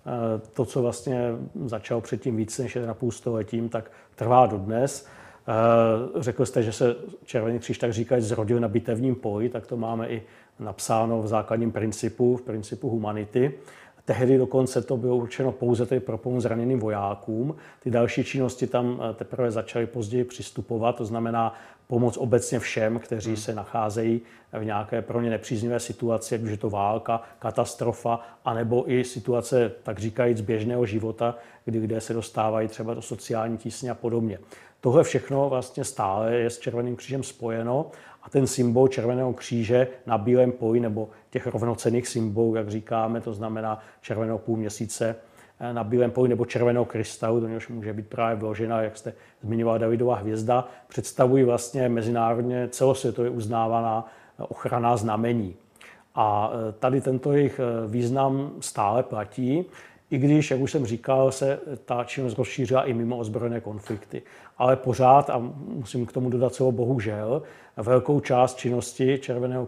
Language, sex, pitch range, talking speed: Czech, male, 115-125 Hz, 150 wpm